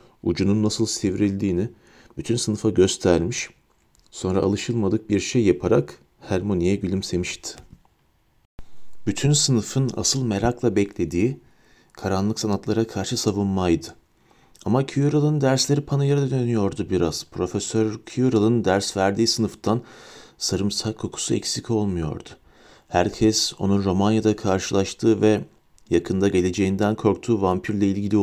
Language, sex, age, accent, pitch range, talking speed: Turkish, male, 40-59, native, 100-135 Hz, 100 wpm